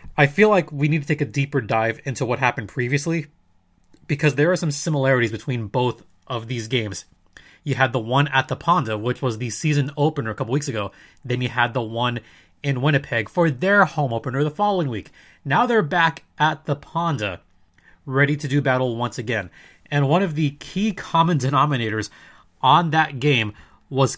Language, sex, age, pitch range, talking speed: English, male, 30-49, 115-155 Hz, 190 wpm